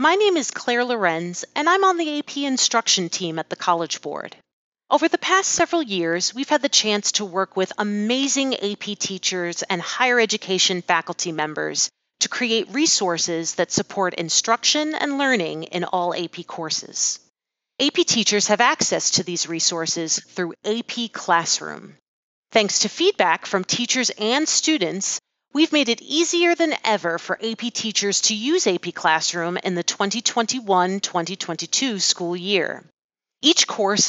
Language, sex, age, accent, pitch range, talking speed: English, female, 40-59, American, 180-265 Hz, 150 wpm